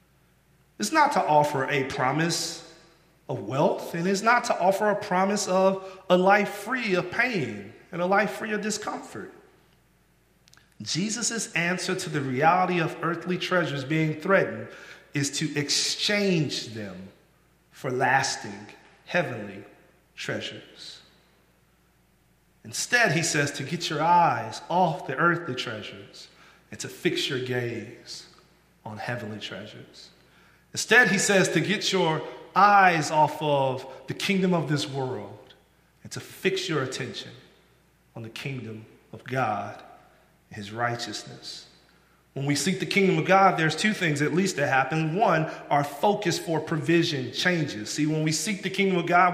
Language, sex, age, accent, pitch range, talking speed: English, male, 40-59, American, 135-190 Hz, 145 wpm